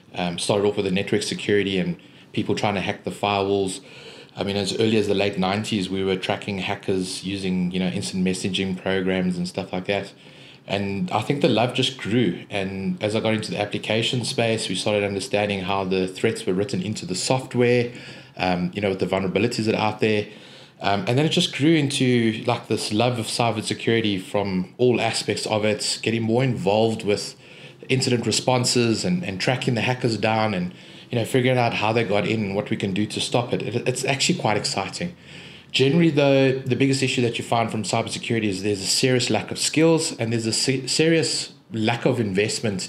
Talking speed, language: 205 wpm, English